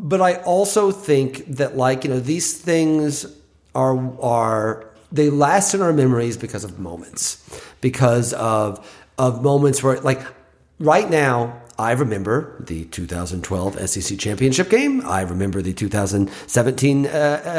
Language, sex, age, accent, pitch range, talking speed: English, male, 40-59, American, 115-160 Hz, 135 wpm